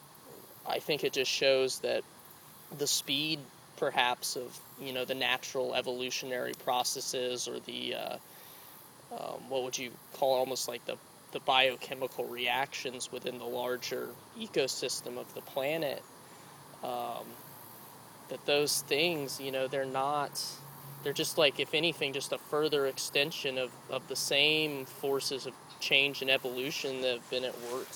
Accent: American